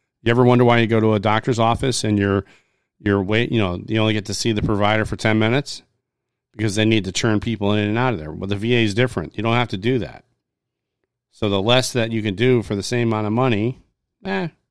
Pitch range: 100-125 Hz